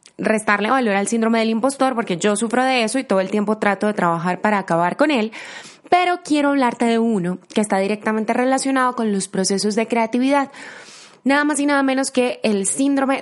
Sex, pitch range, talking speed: female, 205-265 Hz, 200 wpm